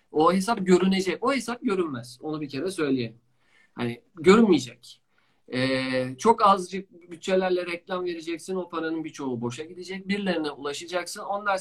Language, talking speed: Turkish, 135 wpm